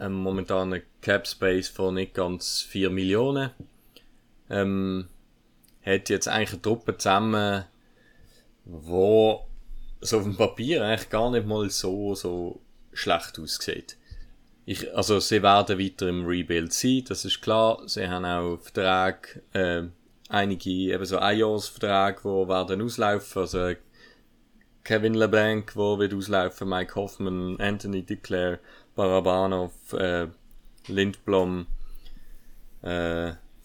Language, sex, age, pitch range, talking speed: German, male, 30-49, 90-105 Hz, 110 wpm